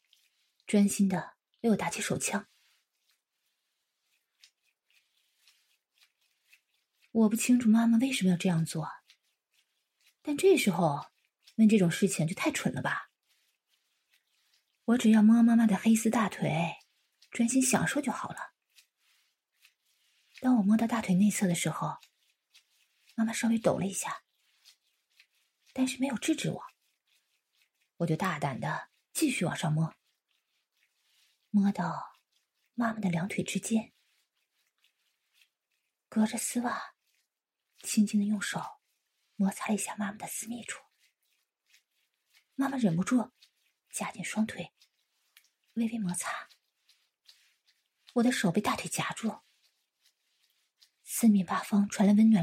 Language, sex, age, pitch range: English, female, 30-49, 195-235 Hz